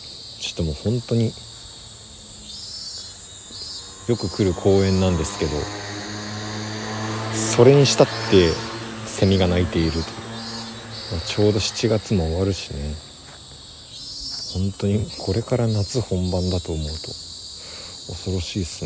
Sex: male